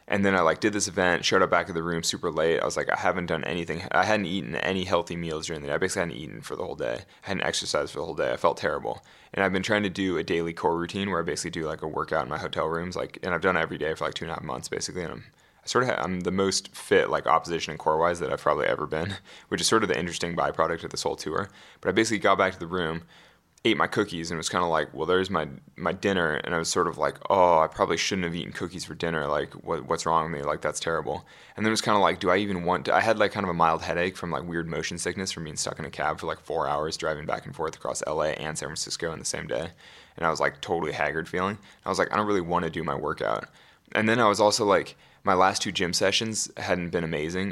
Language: English